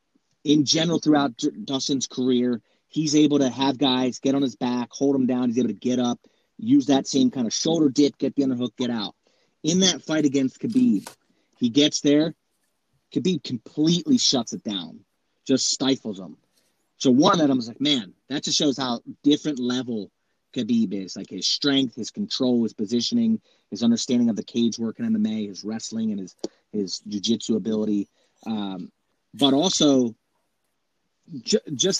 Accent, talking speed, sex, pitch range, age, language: American, 170 wpm, male, 125-170 Hz, 30-49, English